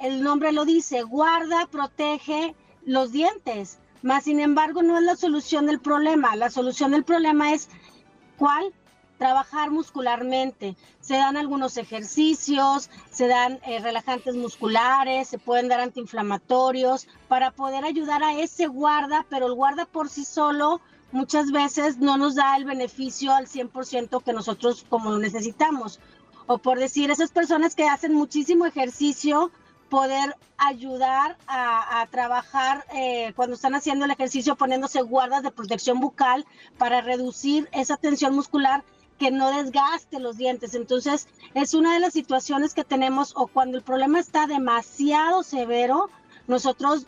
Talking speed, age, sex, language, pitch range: 145 wpm, 40-59, female, Spanish, 255-295 Hz